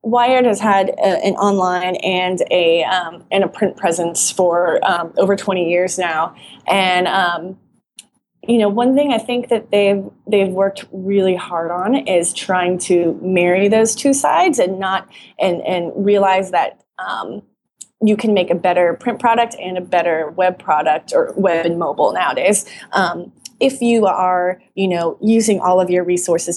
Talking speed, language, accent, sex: 170 wpm, English, American, female